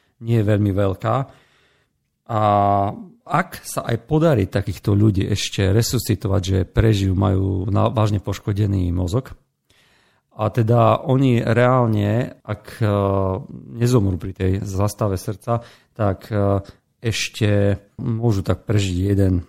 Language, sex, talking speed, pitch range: Slovak, male, 110 wpm, 95-115 Hz